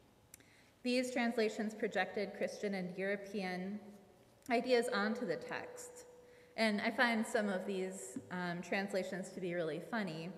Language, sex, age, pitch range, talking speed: English, female, 20-39, 180-240 Hz, 125 wpm